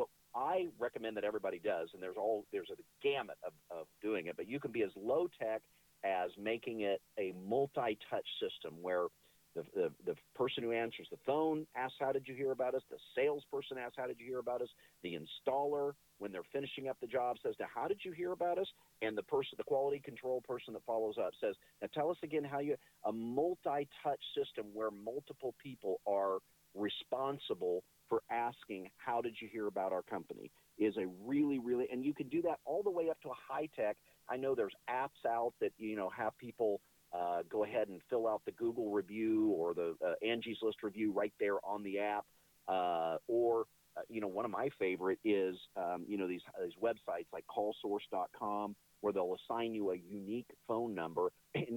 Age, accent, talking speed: 50-69, American, 210 wpm